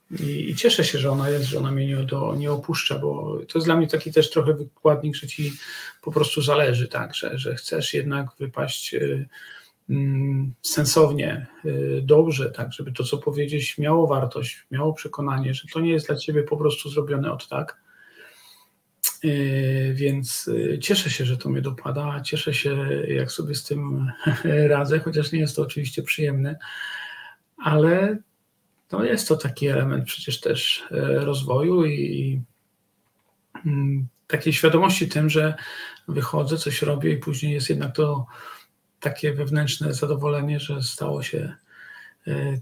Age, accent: 40-59, native